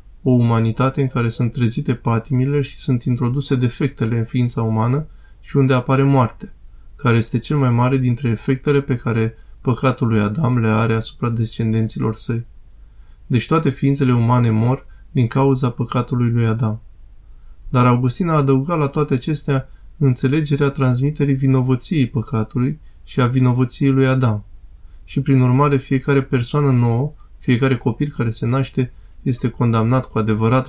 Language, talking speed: Romanian, 150 wpm